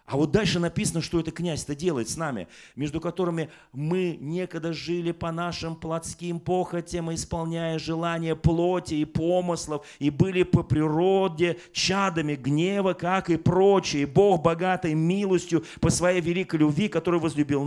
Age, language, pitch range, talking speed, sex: 40-59, Russian, 160-195 Hz, 145 wpm, male